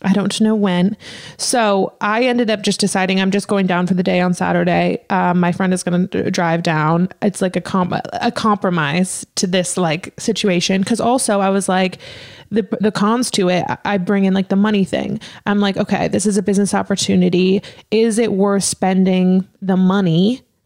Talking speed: 200 wpm